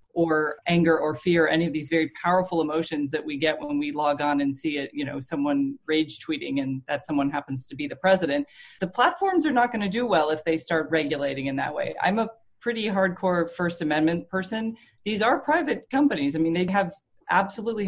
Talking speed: 210 wpm